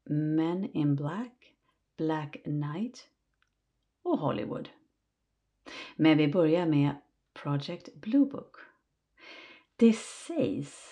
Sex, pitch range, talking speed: female, 140-195 Hz, 90 wpm